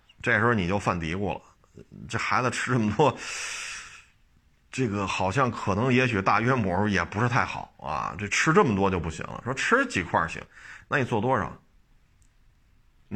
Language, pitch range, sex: Chinese, 100-130 Hz, male